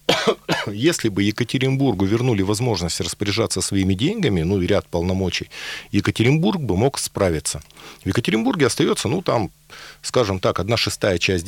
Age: 40-59